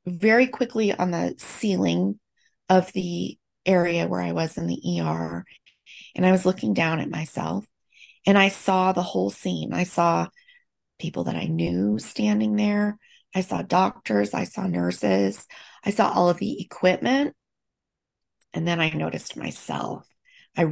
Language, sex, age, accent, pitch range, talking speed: English, female, 30-49, American, 165-215 Hz, 155 wpm